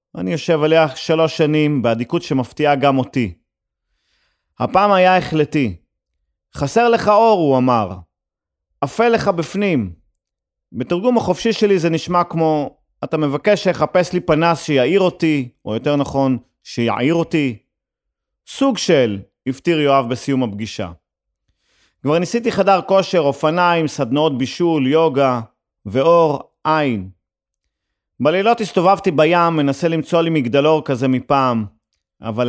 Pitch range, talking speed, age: 120-170 Hz, 120 wpm, 40-59